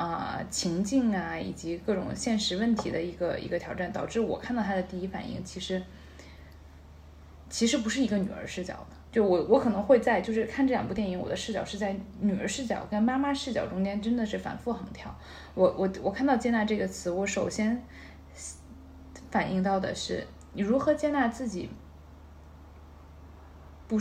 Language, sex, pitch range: Chinese, female, 175-230 Hz